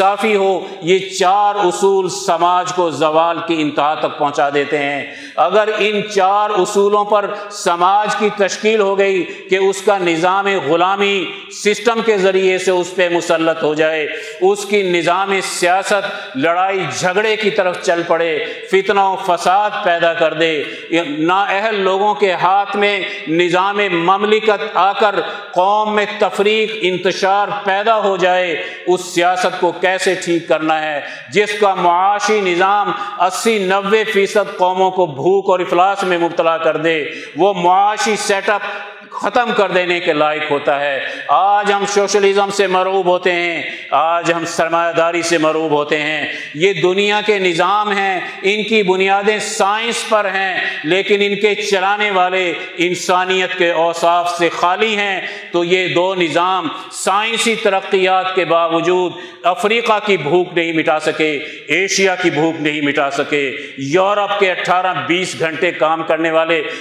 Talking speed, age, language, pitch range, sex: 150 wpm, 50-69, Urdu, 170-205 Hz, male